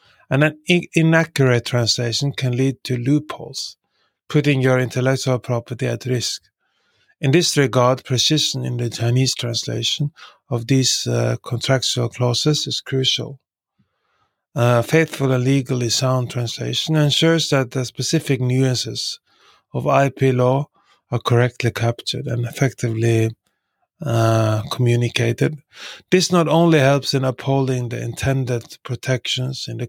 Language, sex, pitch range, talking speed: English, male, 120-135 Hz, 125 wpm